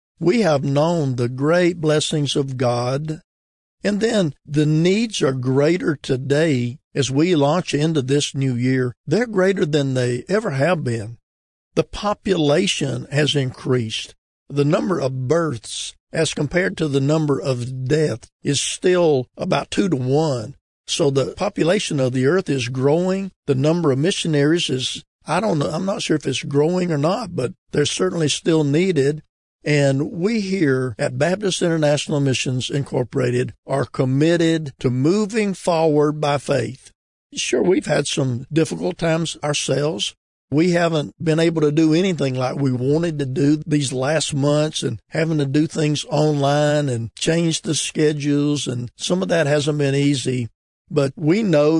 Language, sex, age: English, male, 50-69